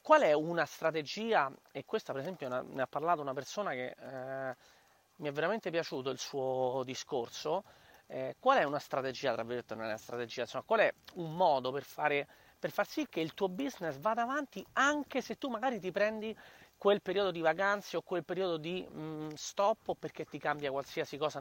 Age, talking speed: 30-49, 190 wpm